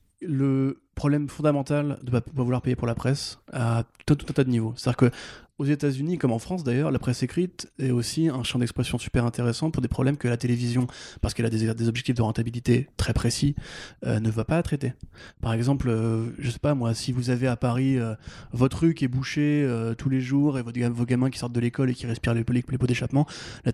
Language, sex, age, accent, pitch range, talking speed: French, male, 20-39, French, 115-135 Hz, 245 wpm